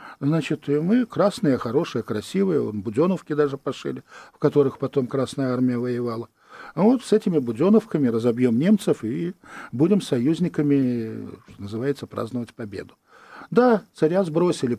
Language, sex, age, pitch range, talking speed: Russian, male, 50-69, 115-155 Hz, 120 wpm